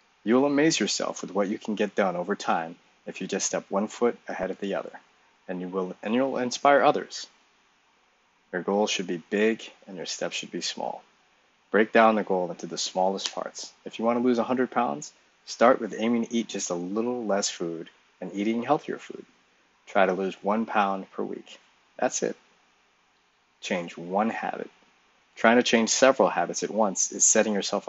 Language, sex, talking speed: English, male, 190 wpm